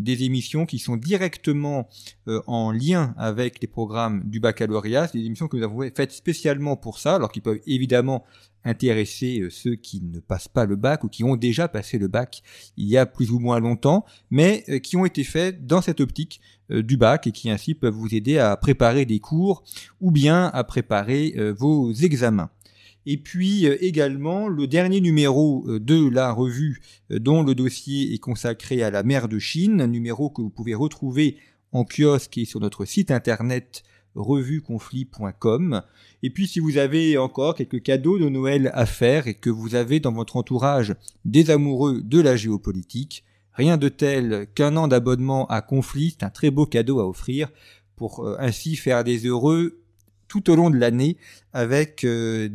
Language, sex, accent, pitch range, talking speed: French, male, French, 115-150 Hz, 185 wpm